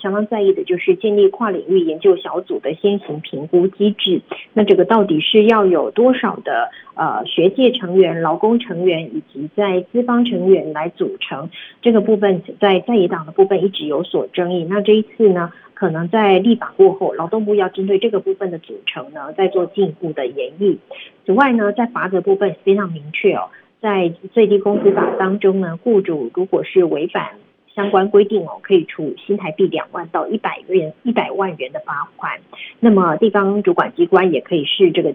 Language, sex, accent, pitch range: Chinese, female, native, 180-225 Hz